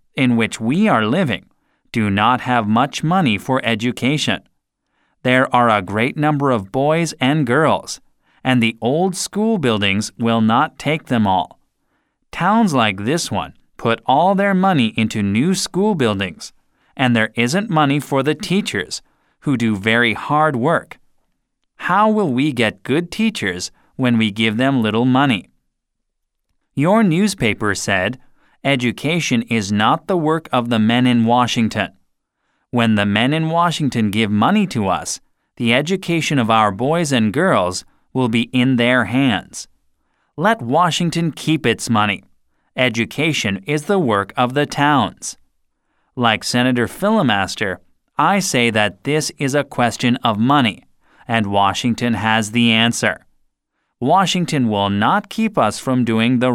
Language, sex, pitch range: Korean, male, 115-155 Hz